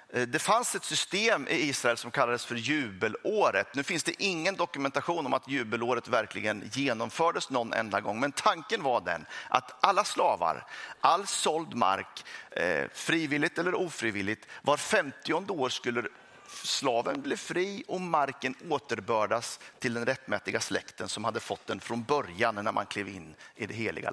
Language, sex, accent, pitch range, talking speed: Swedish, male, native, 110-150 Hz, 155 wpm